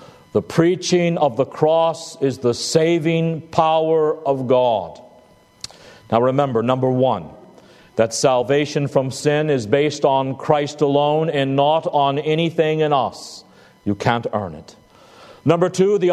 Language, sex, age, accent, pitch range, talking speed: English, male, 50-69, American, 130-175 Hz, 140 wpm